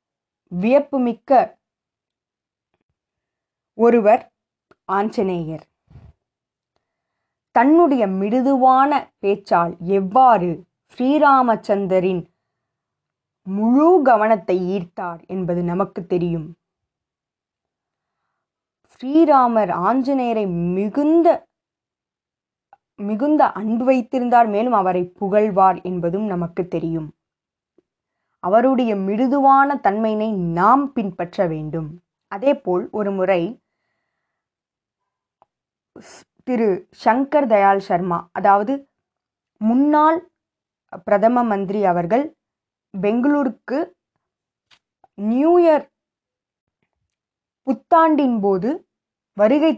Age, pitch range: 20-39, 185-265 Hz